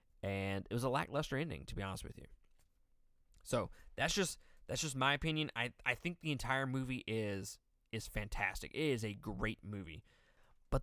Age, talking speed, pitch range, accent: 20-39, 185 wpm, 105-130 Hz, American